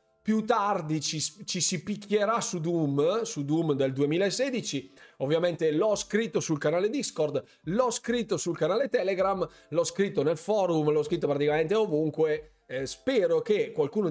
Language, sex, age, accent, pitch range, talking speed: Italian, male, 30-49, native, 135-215 Hz, 150 wpm